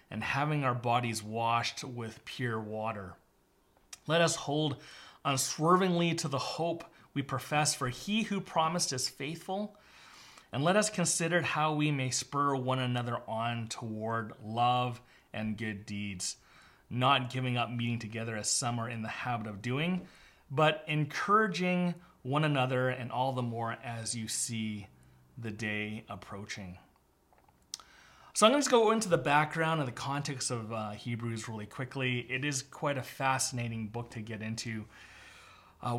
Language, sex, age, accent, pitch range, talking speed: English, male, 30-49, American, 115-150 Hz, 155 wpm